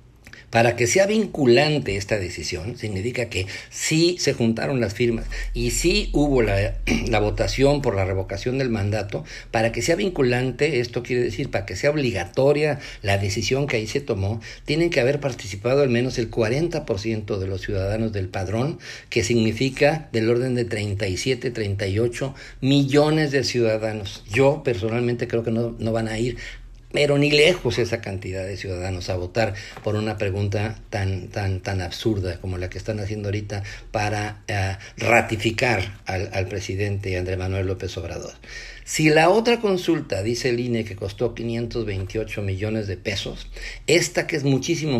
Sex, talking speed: male, 165 wpm